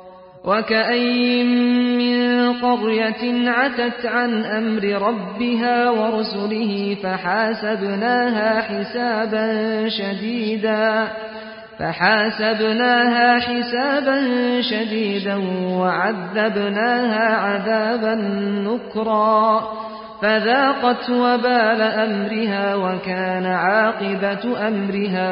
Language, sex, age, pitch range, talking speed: Persian, male, 40-59, 205-245 Hz, 55 wpm